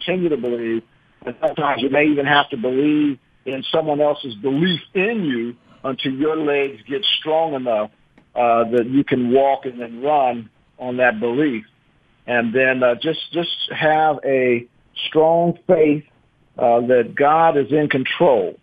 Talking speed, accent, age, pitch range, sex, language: 160 wpm, American, 50-69, 120-155 Hz, male, English